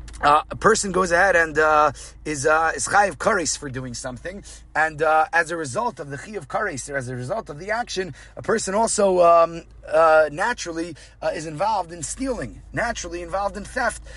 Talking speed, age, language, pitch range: 200 wpm, 30-49, English, 155-210 Hz